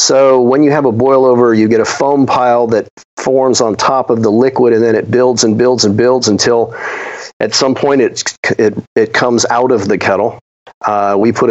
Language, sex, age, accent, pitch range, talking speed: English, male, 40-59, American, 110-130 Hz, 220 wpm